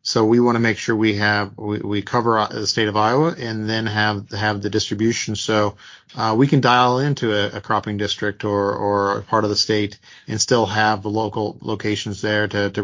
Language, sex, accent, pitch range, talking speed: English, male, American, 105-120 Hz, 220 wpm